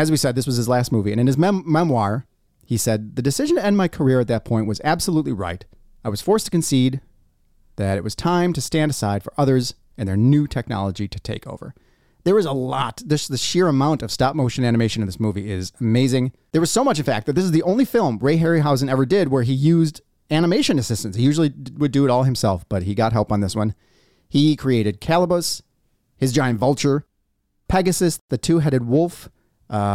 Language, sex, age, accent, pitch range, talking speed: English, male, 30-49, American, 110-155 Hz, 220 wpm